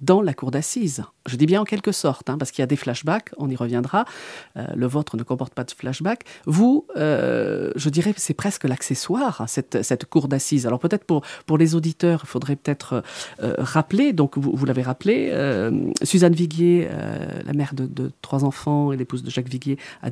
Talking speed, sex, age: 215 wpm, female, 40-59